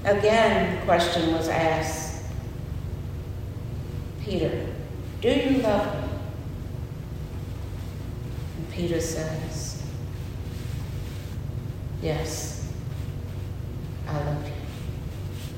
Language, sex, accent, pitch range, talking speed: English, female, American, 115-160 Hz, 65 wpm